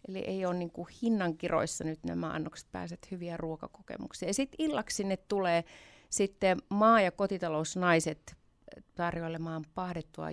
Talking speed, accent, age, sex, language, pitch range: 130 wpm, native, 30-49, female, Finnish, 170-215 Hz